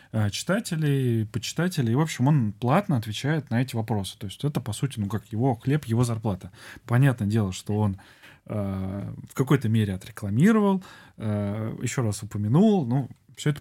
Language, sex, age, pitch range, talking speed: Russian, male, 20-39, 105-140 Hz, 165 wpm